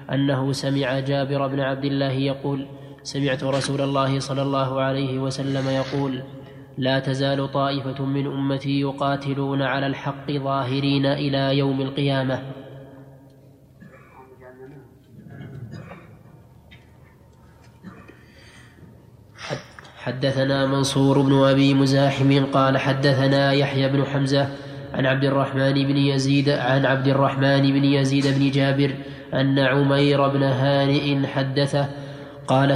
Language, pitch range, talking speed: Arabic, 135-140 Hz, 100 wpm